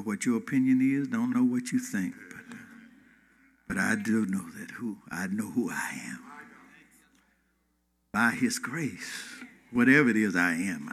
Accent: American